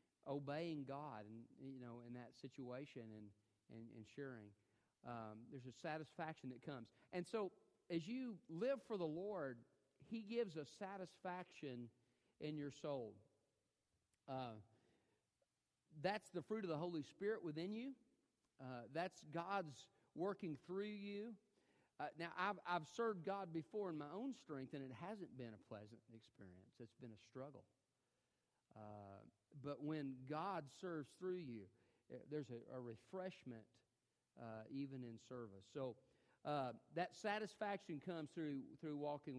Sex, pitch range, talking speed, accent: male, 120-175 Hz, 145 wpm, American